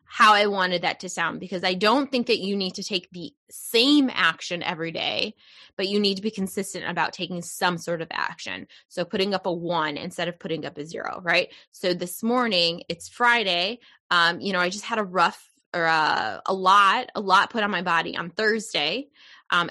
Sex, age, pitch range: female, 20-39, 175-215 Hz